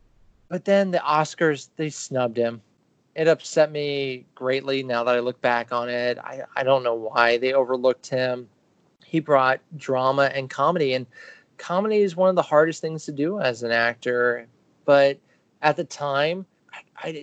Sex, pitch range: male, 125-155 Hz